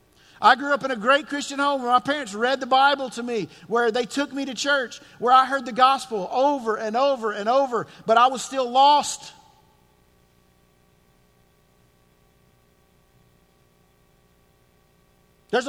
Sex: male